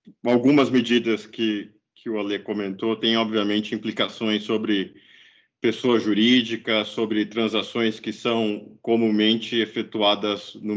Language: Portuguese